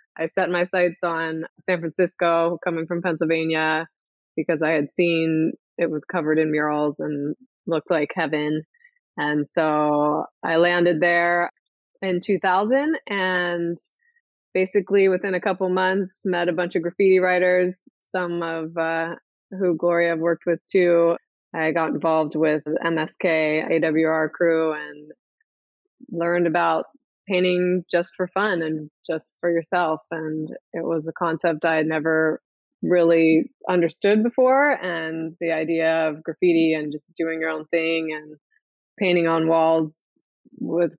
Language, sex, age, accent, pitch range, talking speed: English, female, 20-39, American, 160-185 Hz, 140 wpm